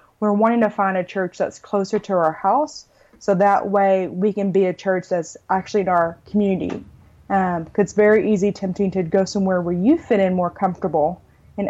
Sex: female